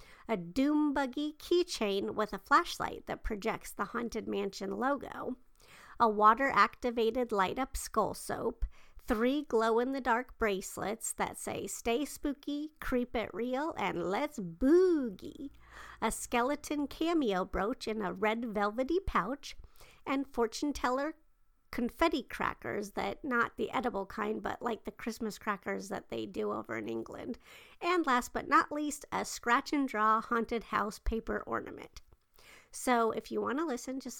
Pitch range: 215-275 Hz